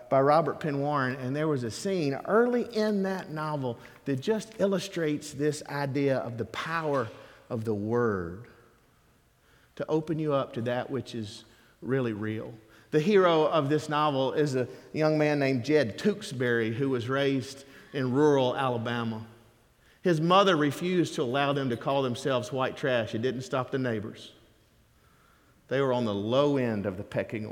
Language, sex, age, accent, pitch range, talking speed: English, male, 50-69, American, 120-155 Hz, 170 wpm